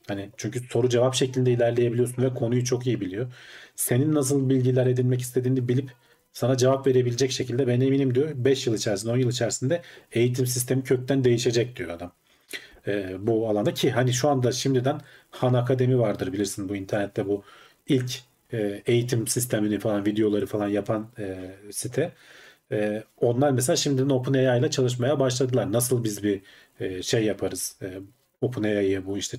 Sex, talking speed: male, 155 wpm